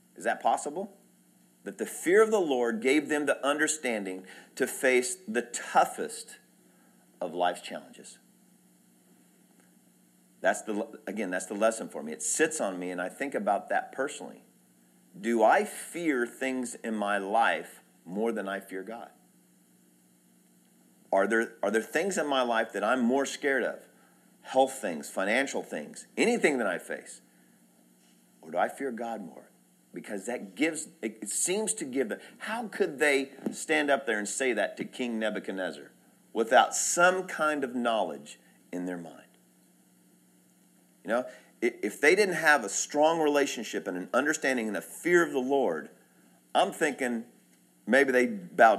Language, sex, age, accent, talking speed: English, male, 50-69, American, 160 wpm